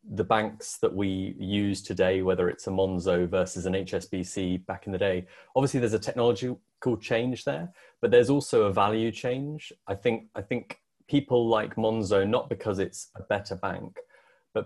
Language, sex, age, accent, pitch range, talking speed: English, male, 20-39, British, 95-115 Hz, 175 wpm